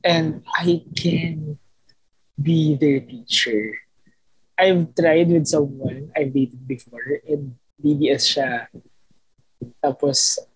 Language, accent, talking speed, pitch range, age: Filipino, native, 95 wpm, 130-170 Hz, 20-39